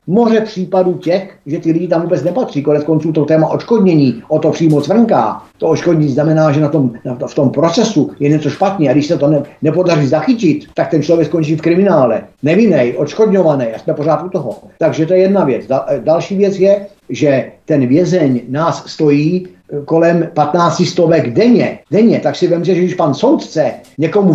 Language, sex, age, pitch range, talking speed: Czech, male, 50-69, 145-175 Hz, 195 wpm